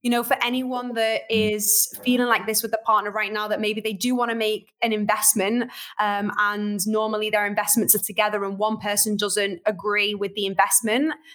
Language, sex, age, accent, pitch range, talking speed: English, female, 20-39, British, 210-245 Hz, 200 wpm